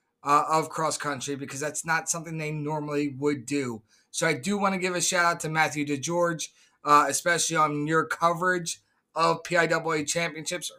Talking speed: 165 wpm